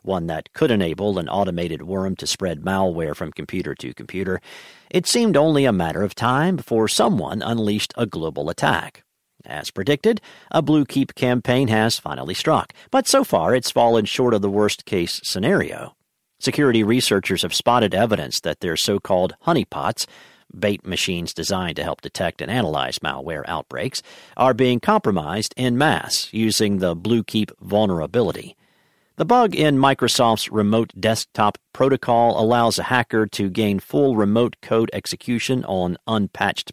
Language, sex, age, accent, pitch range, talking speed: English, male, 50-69, American, 95-125 Hz, 150 wpm